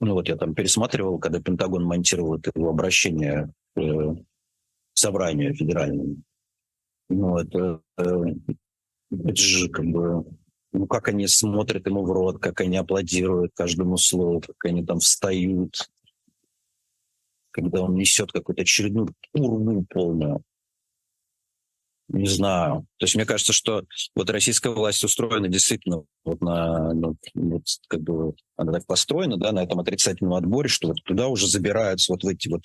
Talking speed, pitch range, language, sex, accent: 140 wpm, 85-105 Hz, Russian, male, native